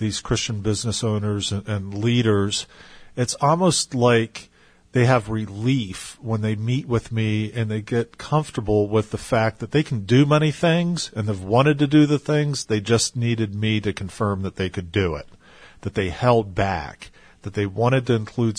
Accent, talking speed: American, 185 wpm